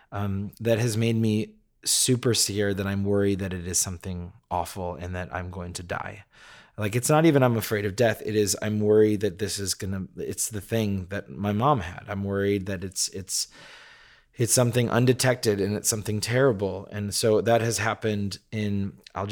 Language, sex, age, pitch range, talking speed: English, male, 30-49, 100-115 Hz, 195 wpm